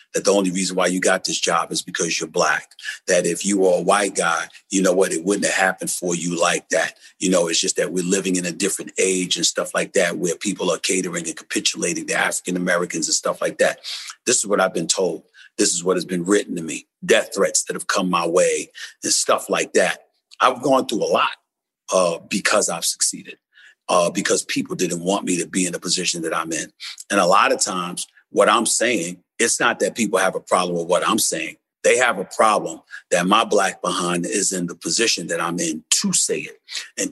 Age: 40-59